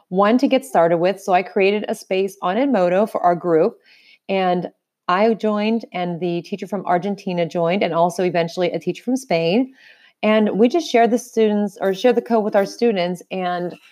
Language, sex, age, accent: English, female, 30-49, American